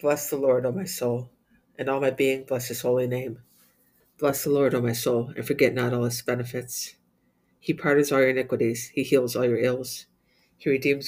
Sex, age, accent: female, 50-69, American